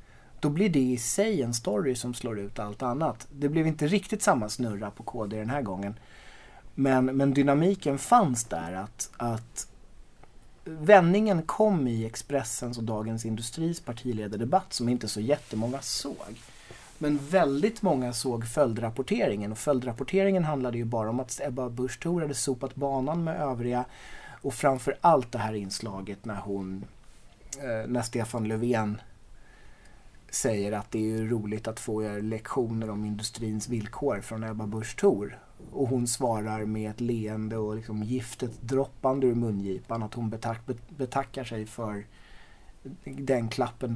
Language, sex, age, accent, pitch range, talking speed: Swedish, male, 30-49, native, 110-140 Hz, 145 wpm